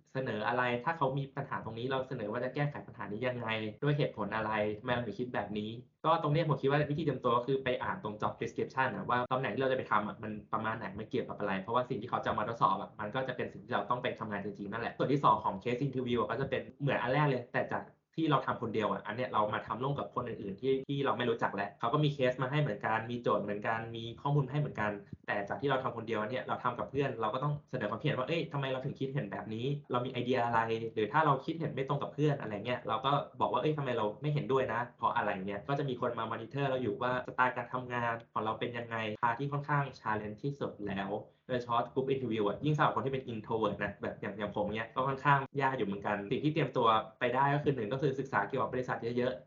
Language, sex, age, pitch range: Thai, male, 20-39, 110-140 Hz